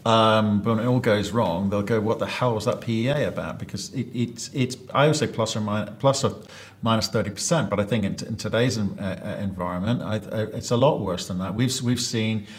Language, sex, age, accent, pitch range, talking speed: English, male, 50-69, British, 100-120 Hz, 245 wpm